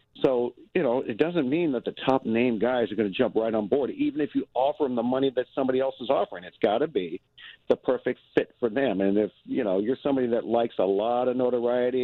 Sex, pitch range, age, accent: male, 110-135 Hz, 50-69, American